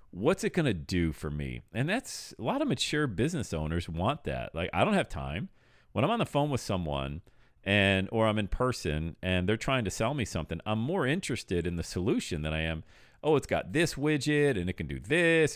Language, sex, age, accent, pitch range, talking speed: English, male, 40-59, American, 95-140 Hz, 230 wpm